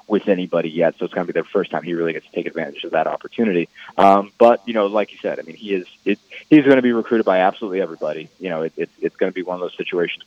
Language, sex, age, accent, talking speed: English, male, 30-49, American, 285 wpm